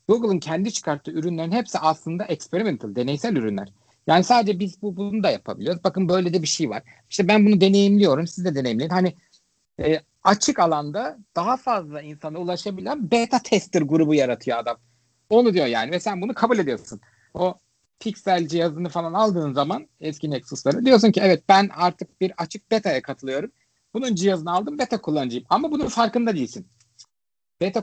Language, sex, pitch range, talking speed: Turkish, male, 150-215 Hz, 165 wpm